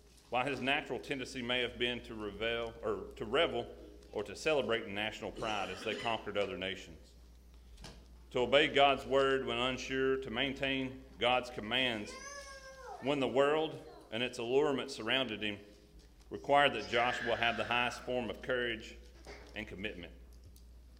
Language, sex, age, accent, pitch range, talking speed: English, male, 40-59, American, 105-135 Hz, 145 wpm